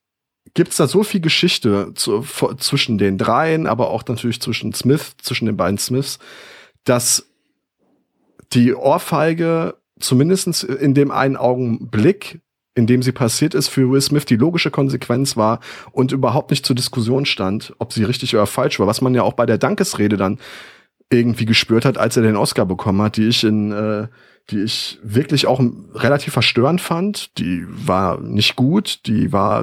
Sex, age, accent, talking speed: male, 30-49, German, 170 wpm